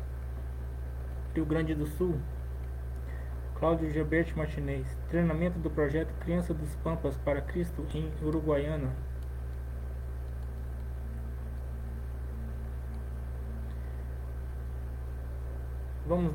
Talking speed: 65 wpm